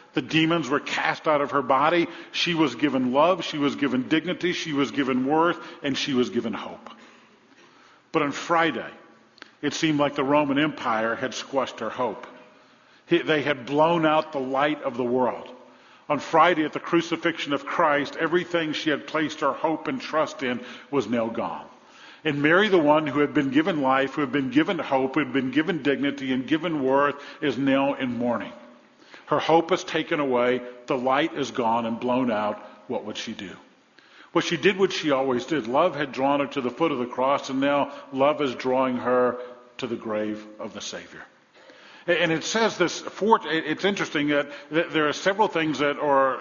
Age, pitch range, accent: 50-69, 135-160 Hz, American